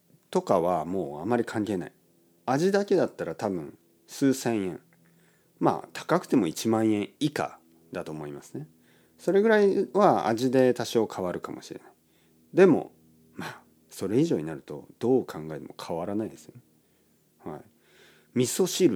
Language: Japanese